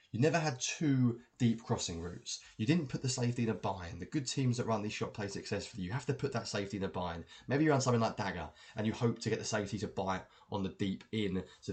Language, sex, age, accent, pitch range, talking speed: English, male, 20-39, British, 95-130 Hz, 270 wpm